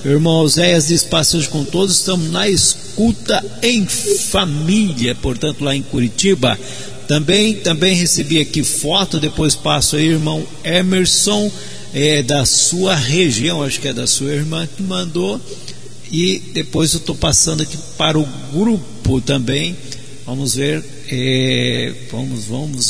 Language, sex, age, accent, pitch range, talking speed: Portuguese, male, 50-69, Brazilian, 135-180 Hz, 135 wpm